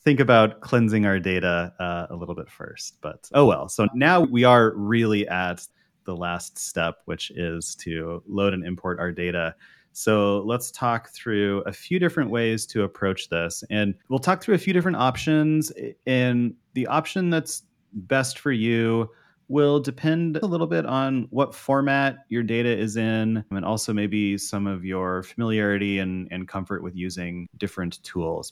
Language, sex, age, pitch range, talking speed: English, male, 30-49, 90-120 Hz, 170 wpm